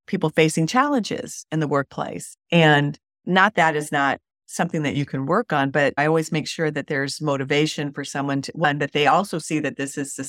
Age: 50-69